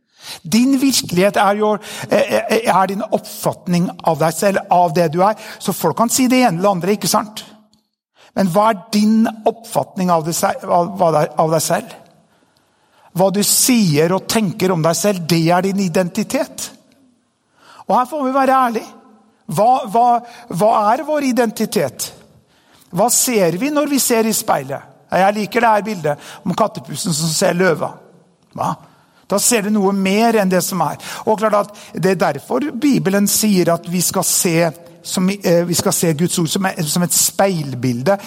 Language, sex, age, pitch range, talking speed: English, male, 60-79, 175-220 Hz, 160 wpm